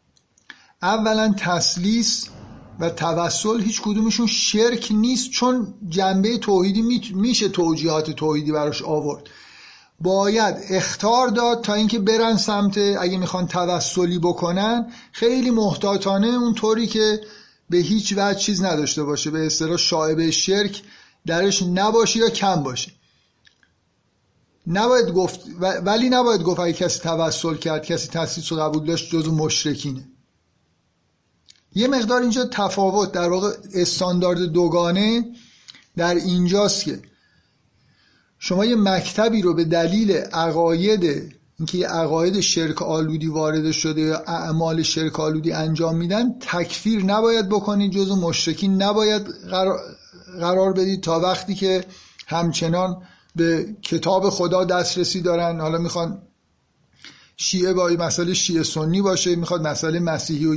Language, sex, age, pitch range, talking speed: Persian, male, 50-69, 165-210 Hz, 115 wpm